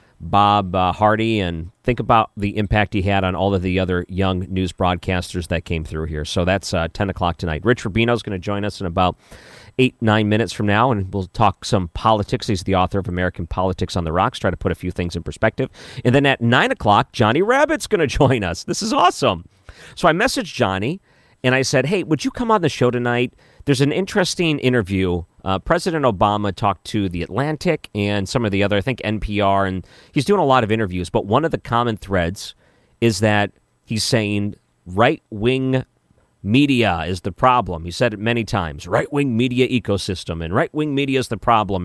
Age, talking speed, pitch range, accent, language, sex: 40-59, 210 wpm, 95-125 Hz, American, English, male